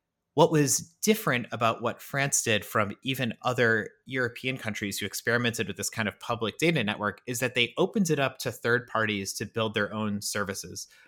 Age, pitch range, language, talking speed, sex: 30-49, 110-135 Hz, English, 190 wpm, male